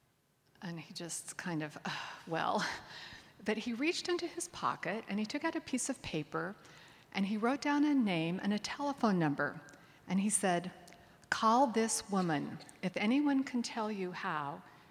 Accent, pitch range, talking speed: American, 165-235 Hz, 175 wpm